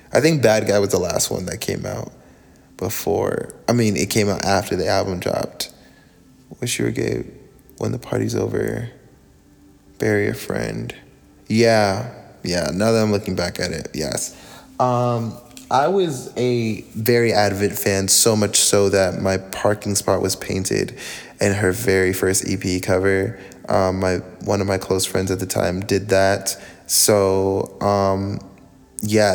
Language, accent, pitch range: English, American, 95-110 Hz